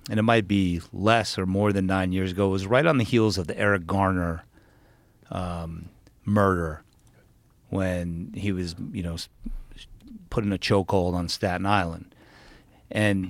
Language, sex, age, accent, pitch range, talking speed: English, male, 40-59, American, 90-110 Hz, 160 wpm